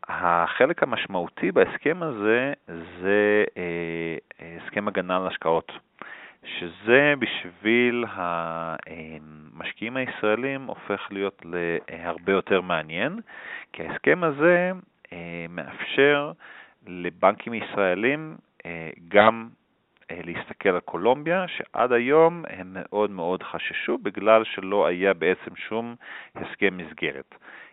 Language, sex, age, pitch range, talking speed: Hebrew, male, 40-59, 85-120 Hz, 90 wpm